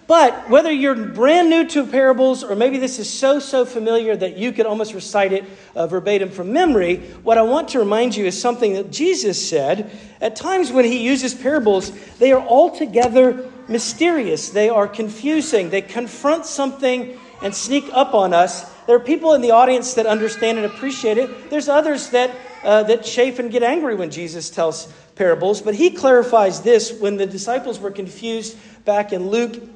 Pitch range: 195-260 Hz